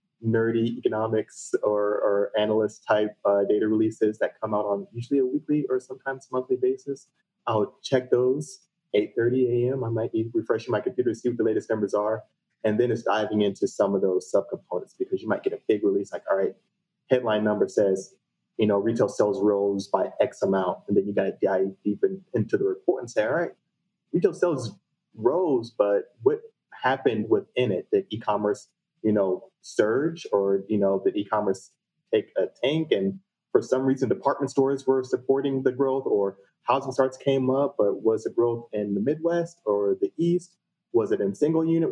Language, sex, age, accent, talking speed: English, male, 30-49, American, 190 wpm